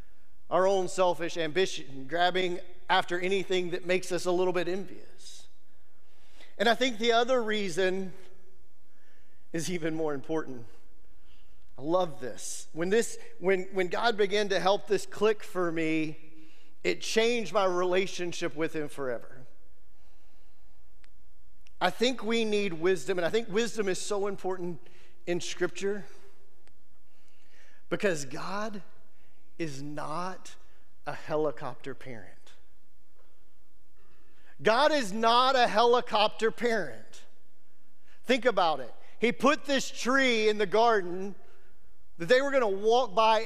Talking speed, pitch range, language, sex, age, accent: 120 wpm, 155-220 Hz, English, male, 40-59, American